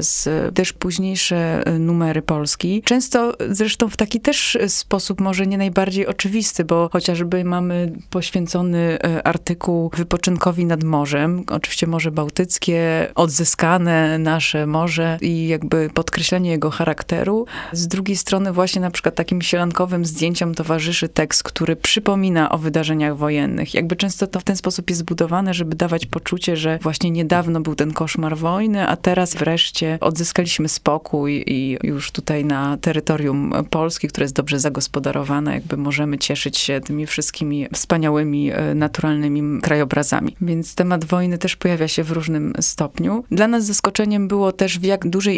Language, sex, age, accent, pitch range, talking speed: Polish, female, 20-39, native, 160-180 Hz, 145 wpm